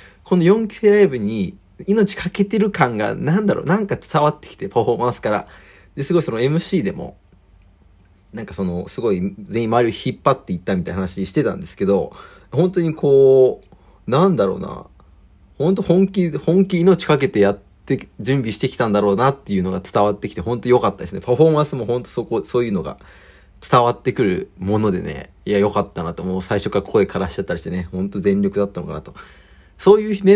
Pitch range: 95-155 Hz